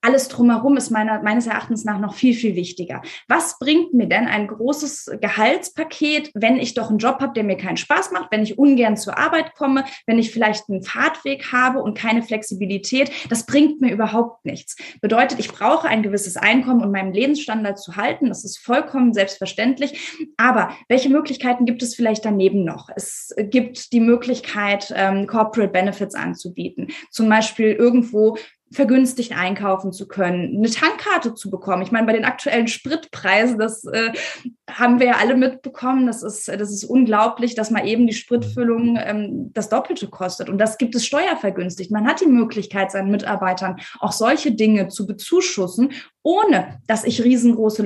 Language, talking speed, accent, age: German, 170 wpm, German, 20-39